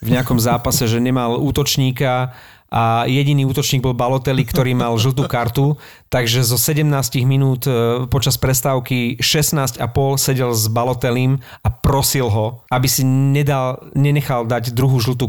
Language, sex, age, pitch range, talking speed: Slovak, male, 40-59, 120-140 Hz, 135 wpm